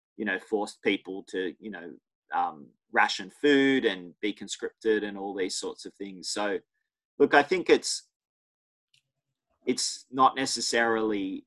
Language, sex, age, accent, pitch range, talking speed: English, male, 30-49, Australian, 100-125 Hz, 140 wpm